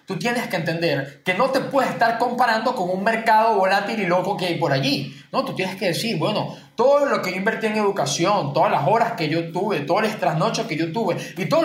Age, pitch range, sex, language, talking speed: 20-39, 175-240 Hz, male, Spanish, 240 wpm